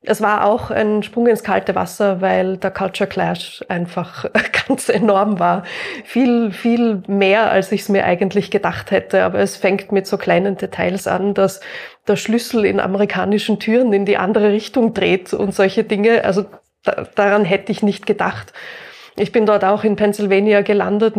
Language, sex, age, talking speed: German, female, 20-39, 175 wpm